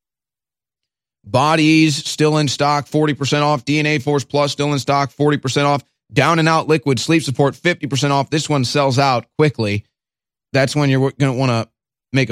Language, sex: English, male